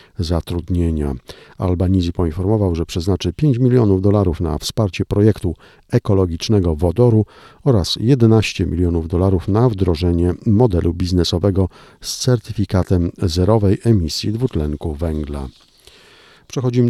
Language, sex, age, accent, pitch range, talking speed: Polish, male, 50-69, native, 90-110 Hz, 100 wpm